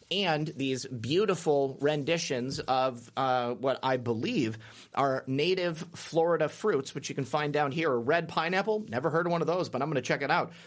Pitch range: 130-170 Hz